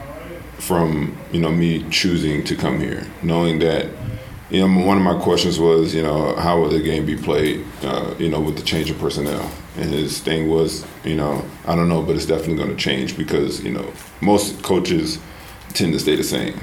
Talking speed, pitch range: 205 wpm, 75-85 Hz